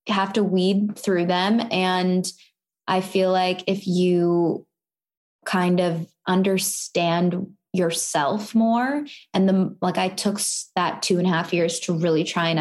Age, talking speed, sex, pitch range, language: 20-39, 150 wpm, female, 170-200 Hz, English